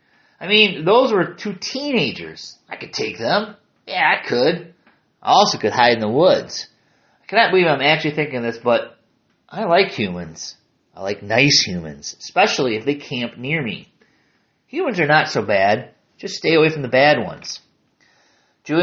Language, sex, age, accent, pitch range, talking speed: English, male, 30-49, American, 125-190 Hz, 170 wpm